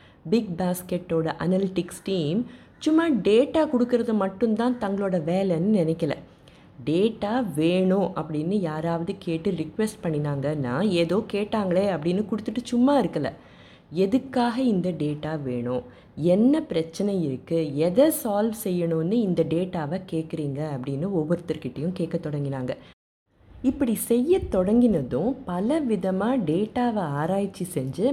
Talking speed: 100 wpm